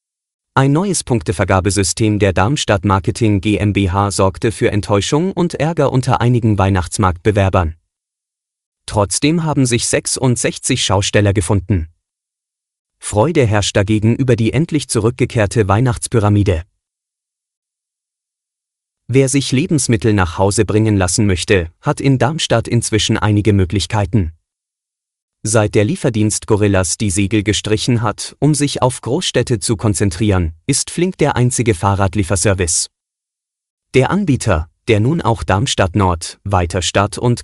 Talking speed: 115 wpm